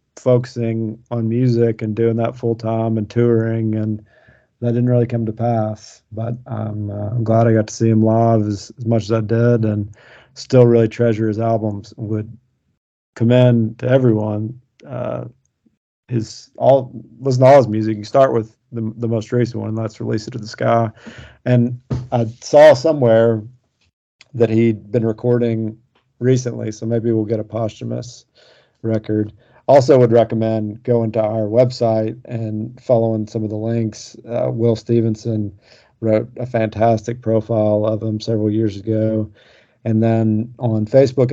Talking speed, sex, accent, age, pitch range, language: 160 wpm, male, American, 40-59, 110-120 Hz, English